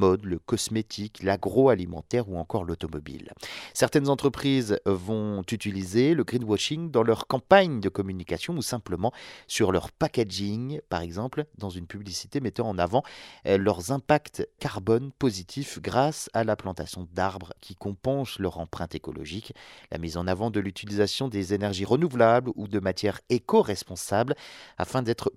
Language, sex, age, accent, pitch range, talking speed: French, male, 40-59, French, 95-130 Hz, 140 wpm